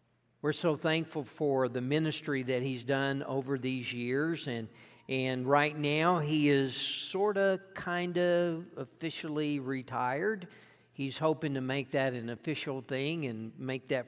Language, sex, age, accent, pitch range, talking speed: English, male, 50-69, American, 120-155 Hz, 150 wpm